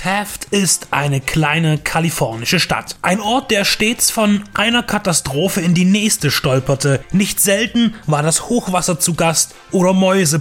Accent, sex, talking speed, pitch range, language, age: German, male, 150 wpm, 155-210 Hz, German, 30-49